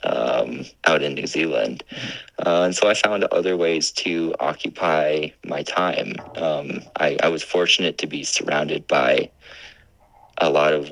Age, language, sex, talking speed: 30-49, English, male, 155 wpm